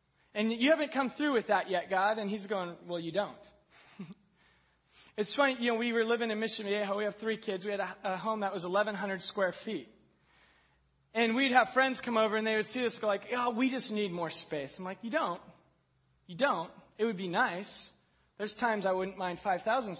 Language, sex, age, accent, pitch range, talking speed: English, male, 30-49, American, 145-220 Hz, 220 wpm